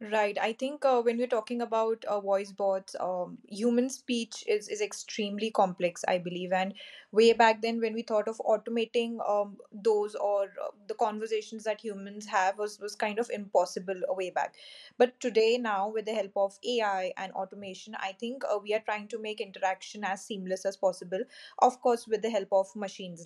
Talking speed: 195 wpm